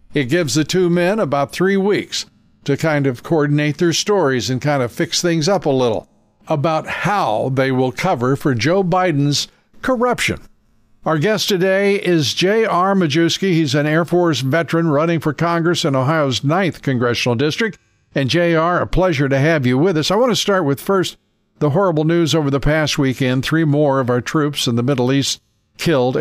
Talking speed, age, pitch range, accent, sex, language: 190 wpm, 50-69, 130-165 Hz, American, male, English